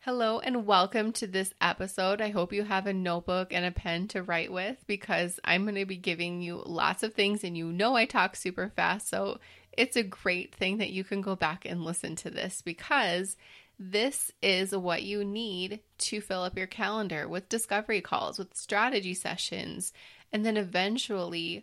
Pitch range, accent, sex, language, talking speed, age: 175-215 Hz, American, female, English, 190 wpm, 20-39